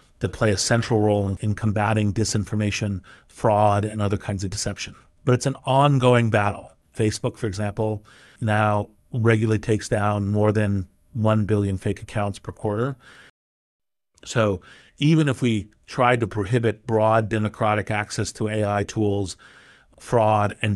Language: English